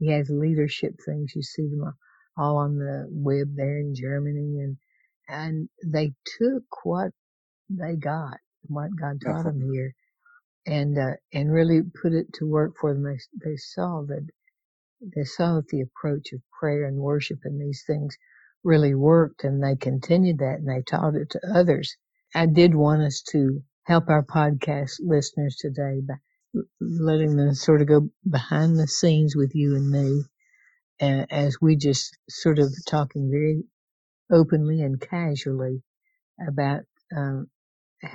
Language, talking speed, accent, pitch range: English, 160 wpm, American, 140-165 Hz